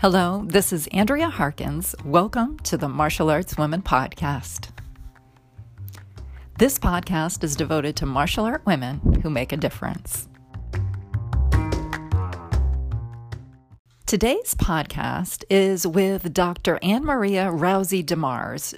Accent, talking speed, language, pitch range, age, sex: American, 105 wpm, English, 140-200 Hz, 40-59, female